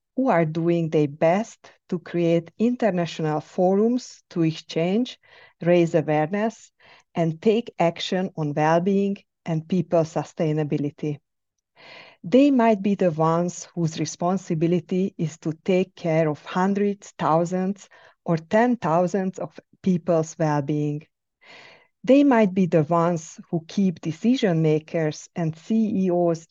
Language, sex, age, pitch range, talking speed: English, female, 50-69, 160-200 Hz, 120 wpm